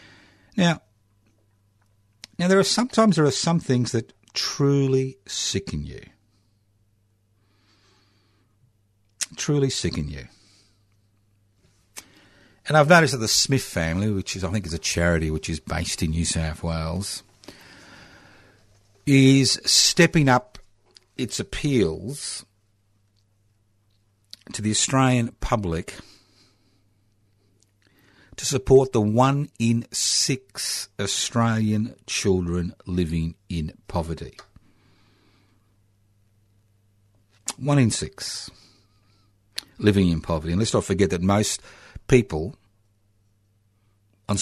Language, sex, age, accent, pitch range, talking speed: English, male, 60-79, Australian, 95-105 Hz, 95 wpm